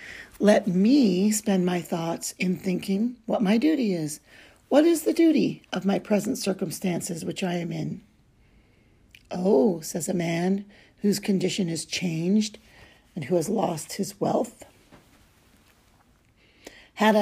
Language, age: English, 50-69